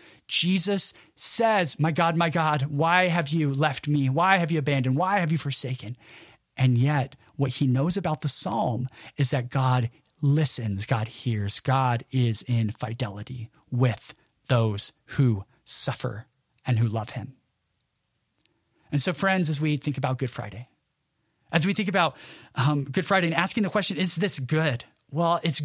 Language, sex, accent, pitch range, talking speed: English, male, American, 130-190 Hz, 165 wpm